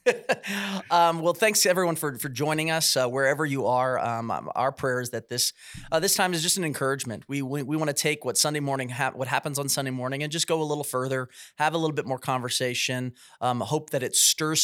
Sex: male